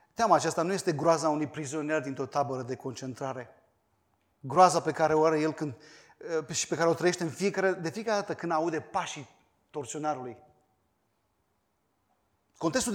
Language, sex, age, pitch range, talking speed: Romanian, male, 30-49, 145-195 Hz, 155 wpm